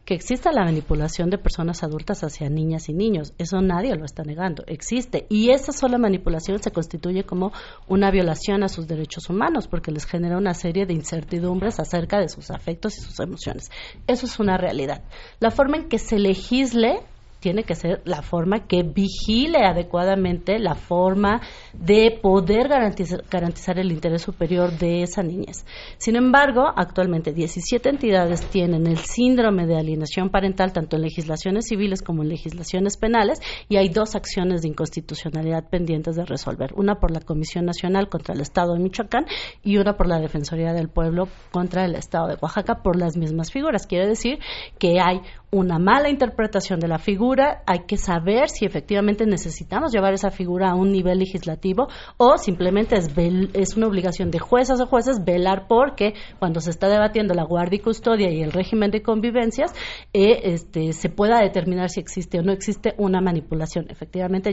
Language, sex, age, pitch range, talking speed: Spanish, female, 40-59, 170-210 Hz, 175 wpm